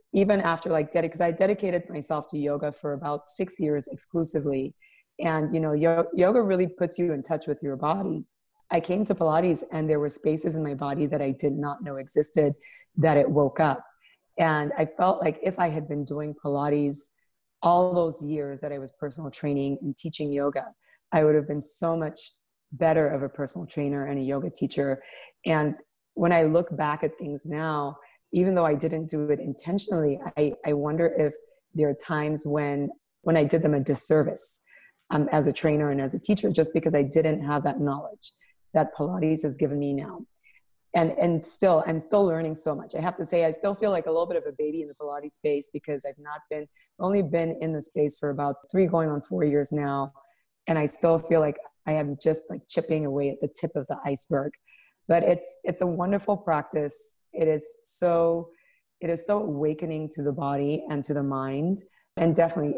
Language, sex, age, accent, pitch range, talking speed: English, female, 30-49, American, 145-170 Hz, 205 wpm